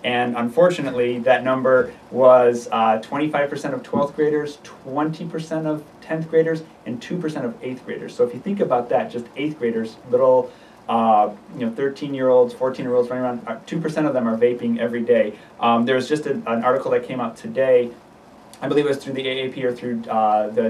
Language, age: English, 30-49